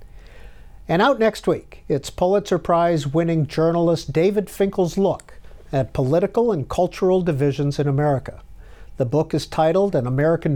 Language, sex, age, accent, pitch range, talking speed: English, male, 50-69, American, 145-190 Hz, 140 wpm